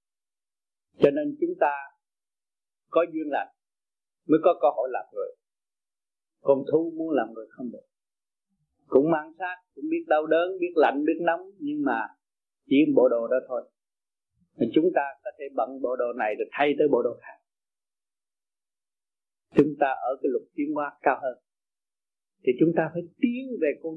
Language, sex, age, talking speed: Vietnamese, male, 30-49, 175 wpm